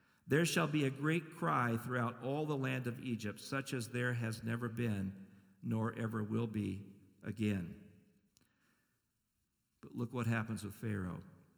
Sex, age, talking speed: male, 50-69, 150 wpm